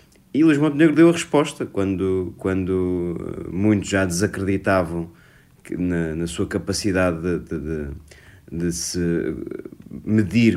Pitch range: 90-110 Hz